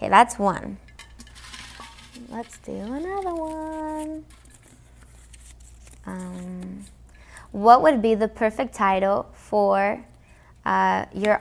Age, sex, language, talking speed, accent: 20-39, female, English, 90 wpm, American